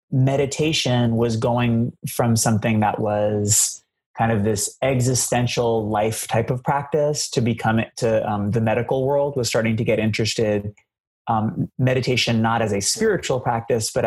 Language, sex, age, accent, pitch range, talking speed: English, male, 30-49, American, 115-140 Hz, 160 wpm